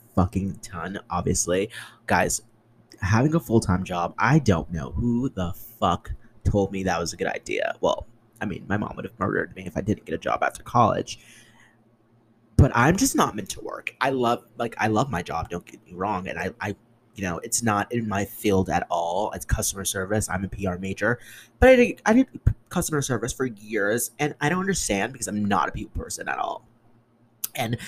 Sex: male